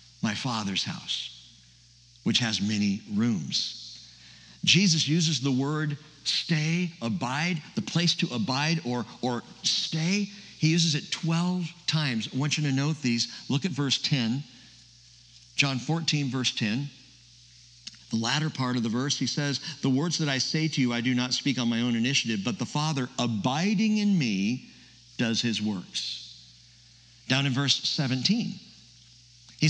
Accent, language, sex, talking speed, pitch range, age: American, English, male, 155 wpm, 120-165 Hz, 60-79